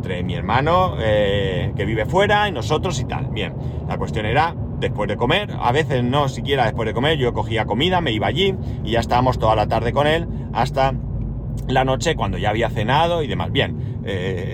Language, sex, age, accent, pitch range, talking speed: Spanish, male, 30-49, Spanish, 115-140 Hz, 200 wpm